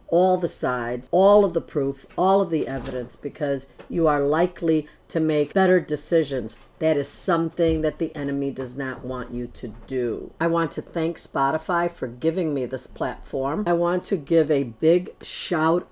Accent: American